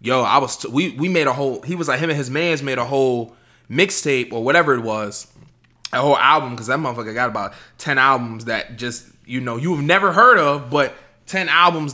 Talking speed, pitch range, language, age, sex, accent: 230 wpm, 130-185 Hz, English, 20-39, male, American